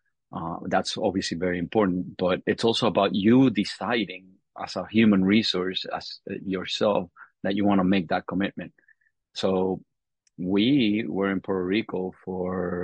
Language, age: English, 30-49